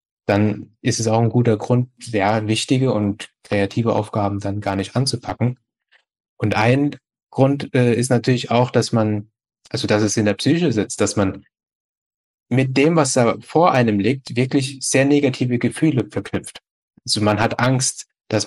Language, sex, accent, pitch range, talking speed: German, male, German, 105-130 Hz, 165 wpm